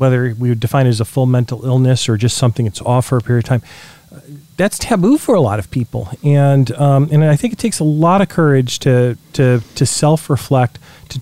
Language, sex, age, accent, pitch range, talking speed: English, male, 40-59, American, 130-160 Hz, 235 wpm